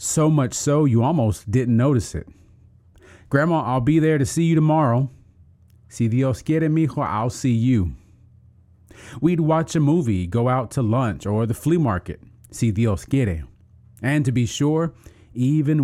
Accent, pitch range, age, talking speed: American, 100-130 Hz, 30-49, 165 wpm